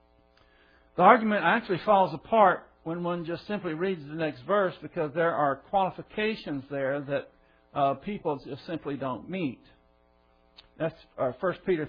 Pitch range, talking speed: 135-190 Hz, 145 wpm